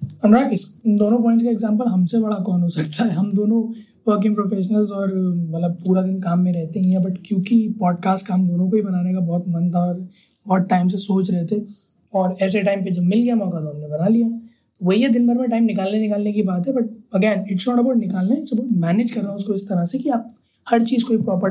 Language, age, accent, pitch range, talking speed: Hindi, 20-39, native, 175-210 Hz, 250 wpm